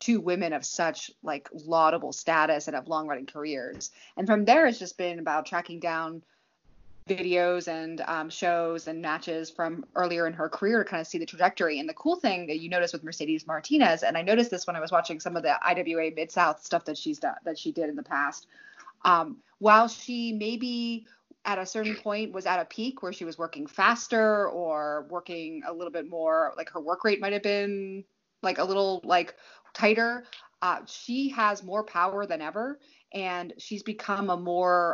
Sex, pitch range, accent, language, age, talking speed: female, 165-215 Hz, American, English, 20-39, 200 wpm